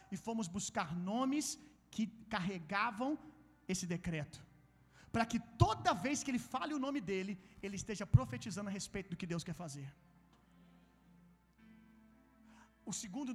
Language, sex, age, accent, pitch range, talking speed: Gujarati, male, 40-59, Brazilian, 205-275 Hz, 135 wpm